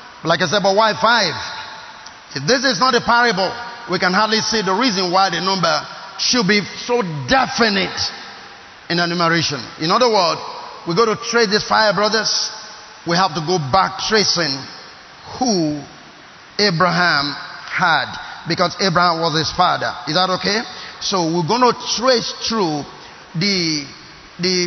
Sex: male